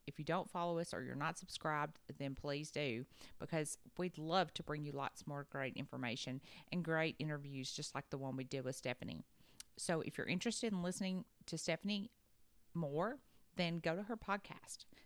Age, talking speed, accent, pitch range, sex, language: 40-59, 185 wpm, American, 145-185 Hz, female, English